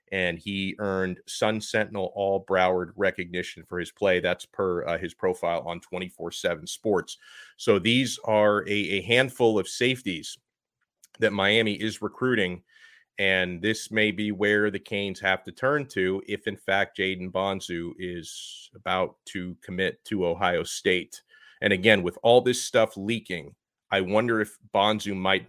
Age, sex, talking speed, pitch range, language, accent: 30-49, male, 155 wpm, 95-125 Hz, English, American